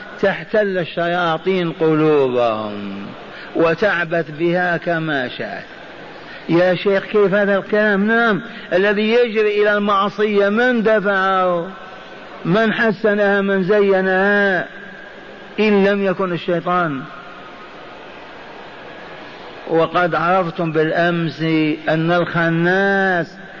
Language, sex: Arabic, male